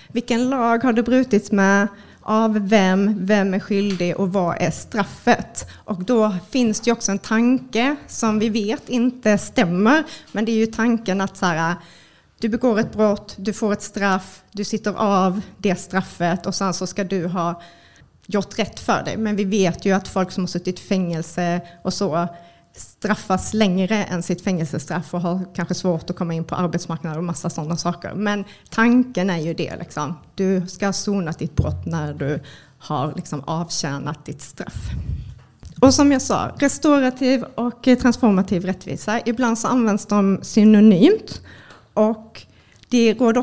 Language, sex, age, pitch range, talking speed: Swedish, female, 30-49, 180-220 Hz, 170 wpm